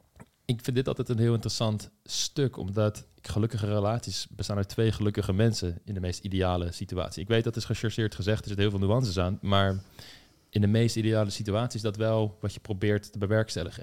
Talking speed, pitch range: 205 wpm, 95-110 Hz